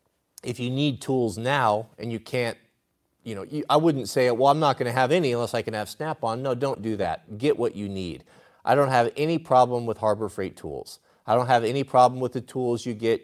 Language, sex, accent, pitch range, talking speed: Italian, male, American, 105-130 Hz, 240 wpm